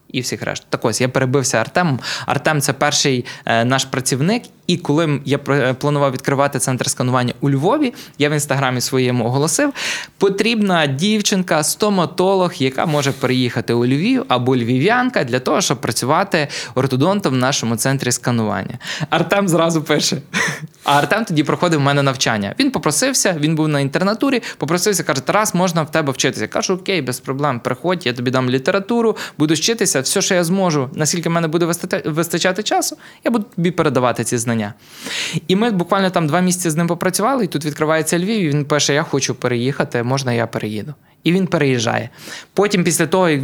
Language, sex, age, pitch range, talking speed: Ukrainian, male, 20-39, 135-180 Hz, 175 wpm